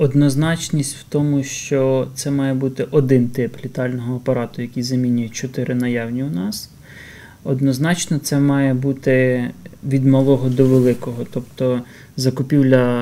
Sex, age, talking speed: male, 20-39, 125 wpm